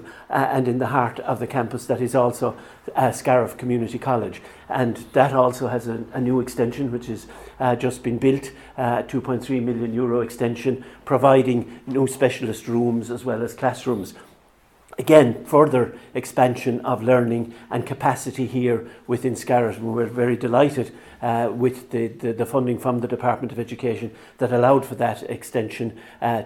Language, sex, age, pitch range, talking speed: English, male, 60-79, 120-130 Hz, 160 wpm